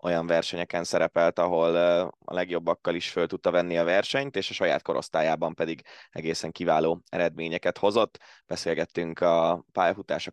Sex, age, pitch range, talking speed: male, 20-39, 85-95 Hz, 140 wpm